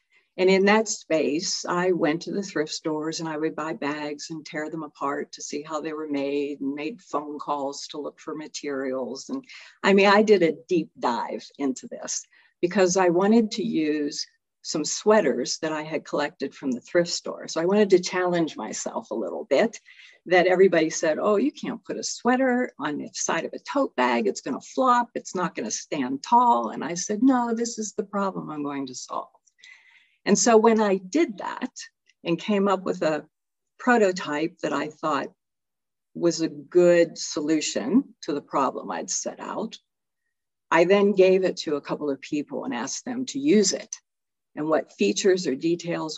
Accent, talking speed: American, 195 wpm